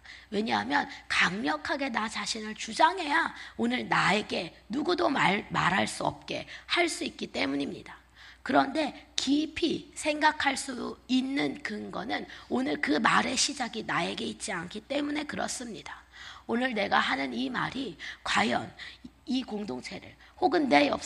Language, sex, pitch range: Korean, female, 215-315 Hz